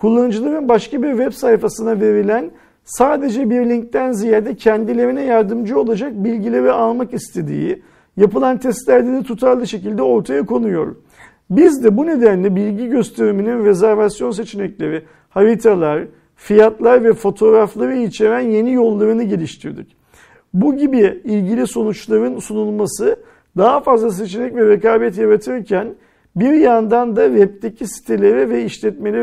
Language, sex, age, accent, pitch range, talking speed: Turkish, male, 50-69, native, 215-250 Hz, 115 wpm